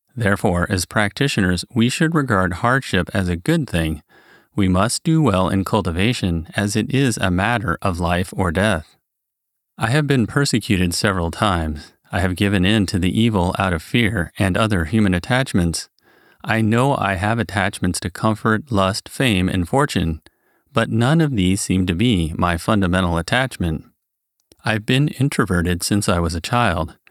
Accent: American